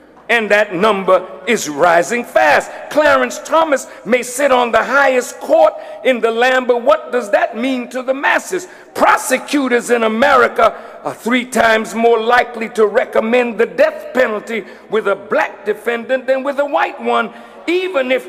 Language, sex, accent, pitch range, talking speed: English, male, American, 245-290 Hz, 160 wpm